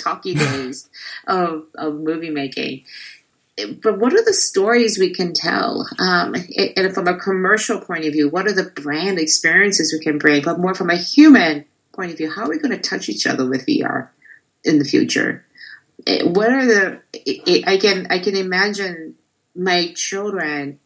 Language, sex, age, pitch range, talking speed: English, female, 50-69, 150-195 Hz, 175 wpm